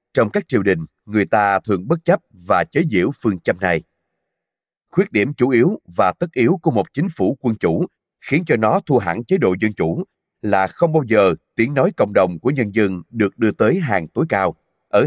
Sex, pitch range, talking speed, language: male, 95-125 Hz, 220 wpm, Vietnamese